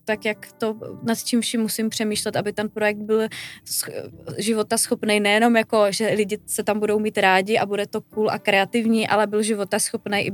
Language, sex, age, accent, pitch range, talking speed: Czech, female, 20-39, native, 210-235 Hz, 195 wpm